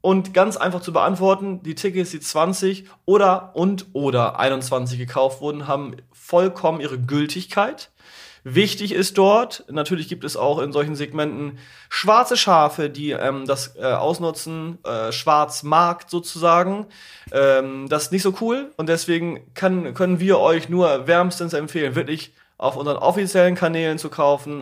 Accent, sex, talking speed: German, male, 150 wpm